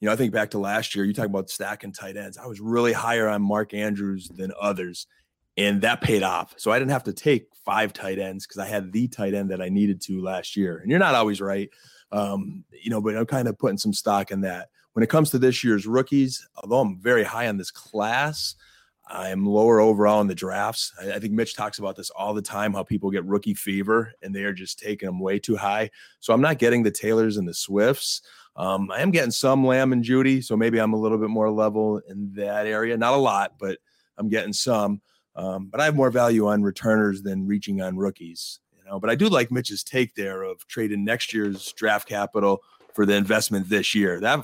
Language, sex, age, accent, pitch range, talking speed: English, male, 30-49, American, 100-115 Hz, 240 wpm